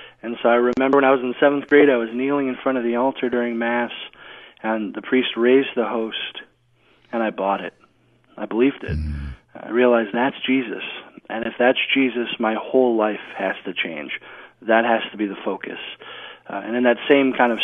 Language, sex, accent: English, male, American